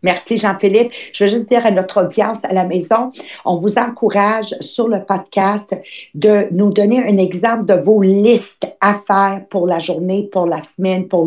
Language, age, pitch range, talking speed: English, 50-69, 190-250 Hz, 185 wpm